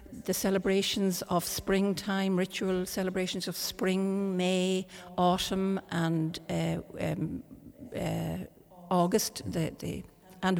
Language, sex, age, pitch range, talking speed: English, female, 60-79, 180-220 Hz, 90 wpm